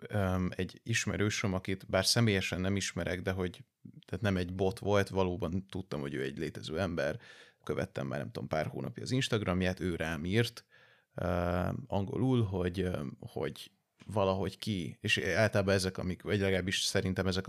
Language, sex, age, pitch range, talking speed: Hungarian, male, 30-49, 95-105 Hz, 150 wpm